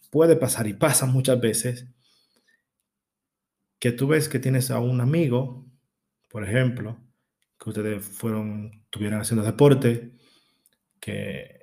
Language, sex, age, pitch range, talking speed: Spanish, male, 20-39, 110-130 Hz, 120 wpm